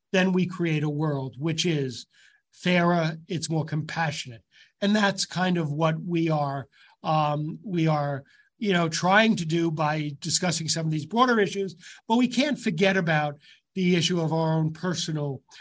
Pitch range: 160-195 Hz